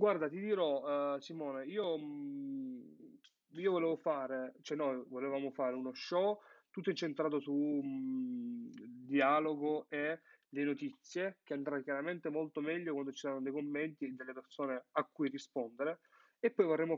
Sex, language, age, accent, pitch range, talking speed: male, Italian, 30-49, native, 130-160 Hz, 140 wpm